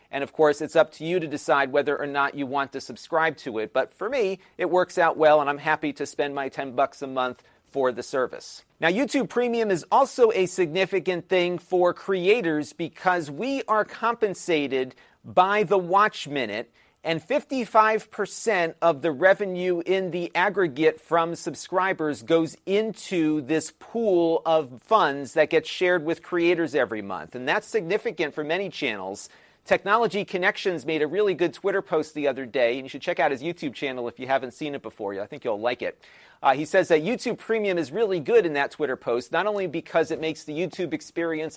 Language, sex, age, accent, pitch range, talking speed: English, male, 40-59, American, 145-190 Hz, 195 wpm